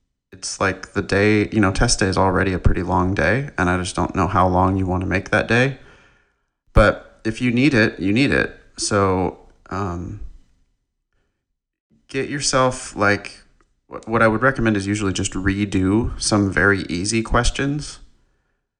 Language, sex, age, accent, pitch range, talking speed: English, male, 30-49, American, 85-105 Hz, 165 wpm